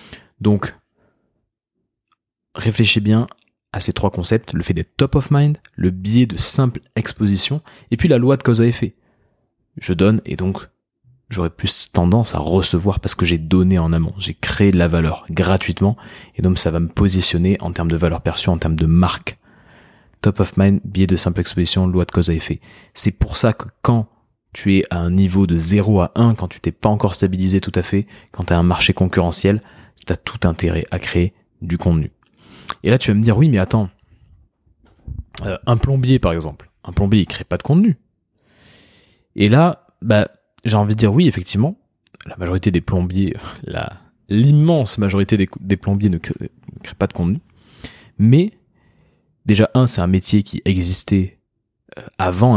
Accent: French